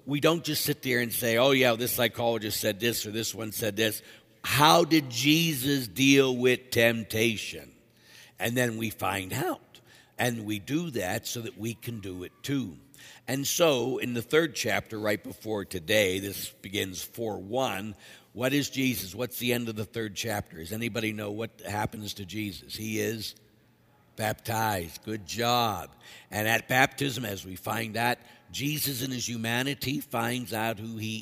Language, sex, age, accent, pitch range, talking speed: English, male, 60-79, American, 110-130 Hz, 170 wpm